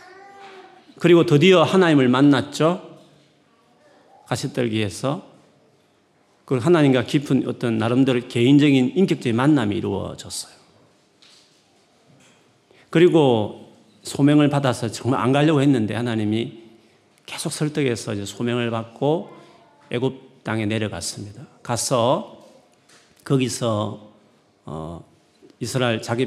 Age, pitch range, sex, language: 40-59, 110-150 Hz, male, Korean